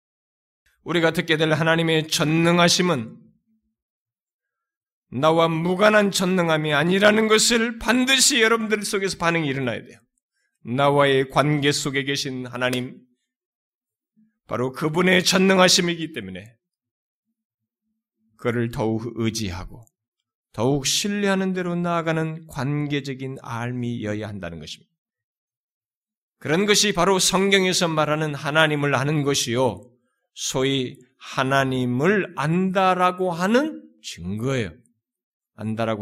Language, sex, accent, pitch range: Korean, male, native, 125-195 Hz